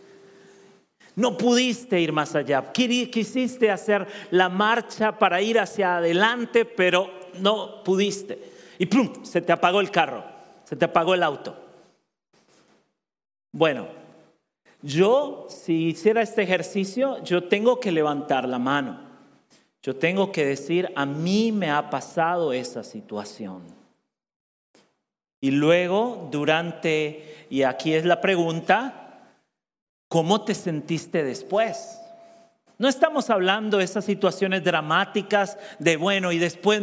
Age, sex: 40-59, male